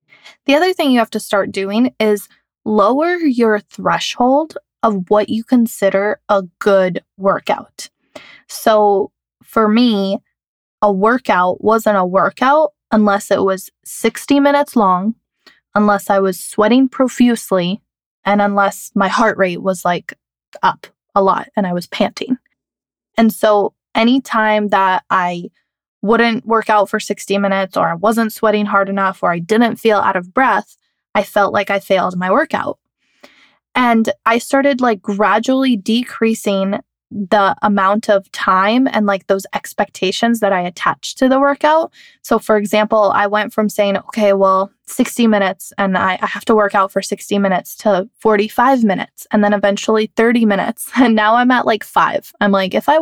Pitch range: 195-235 Hz